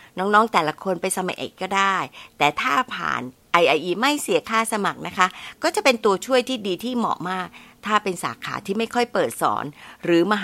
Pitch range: 165-220 Hz